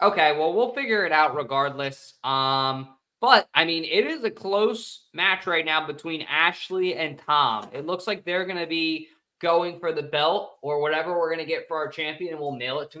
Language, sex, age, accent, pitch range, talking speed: English, male, 20-39, American, 125-165 Hz, 215 wpm